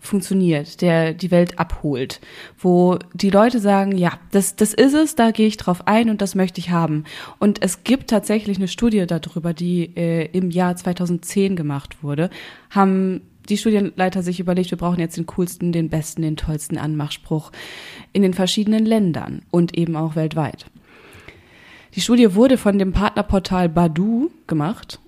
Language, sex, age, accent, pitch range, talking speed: German, female, 20-39, German, 175-215 Hz, 165 wpm